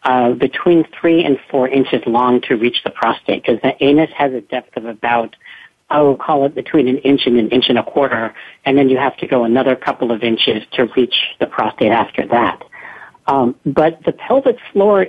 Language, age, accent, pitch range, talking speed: English, 50-69, American, 125-155 Hz, 210 wpm